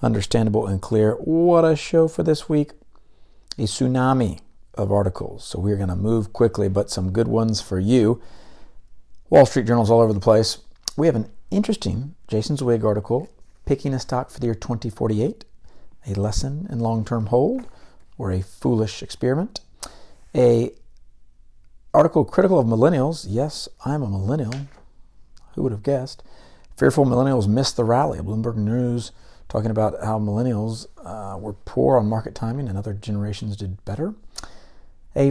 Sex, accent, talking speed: male, American, 155 wpm